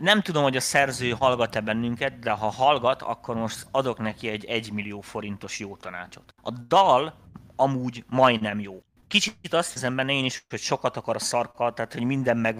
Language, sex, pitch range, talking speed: Hungarian, male, 115-155 Hz, 190 wpm